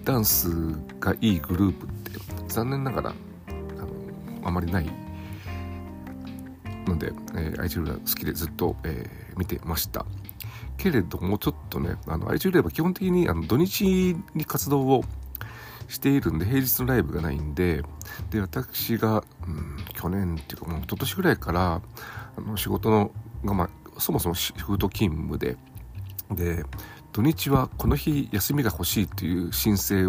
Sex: male